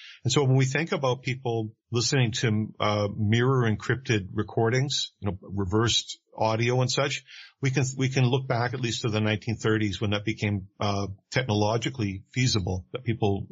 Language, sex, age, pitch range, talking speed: English, male, 50-69, 105-120 Hz, 170 wpm